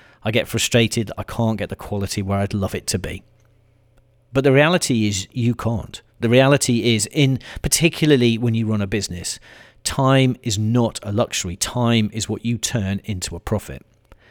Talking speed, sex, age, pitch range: 180 wpm, male, 40-59, 100-120 Hz